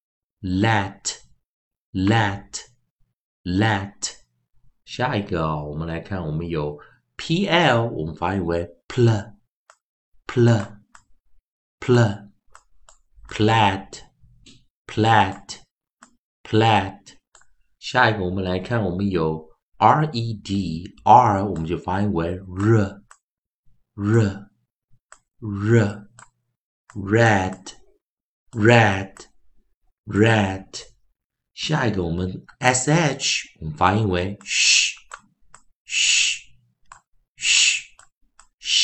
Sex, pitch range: male, 95-115 Hz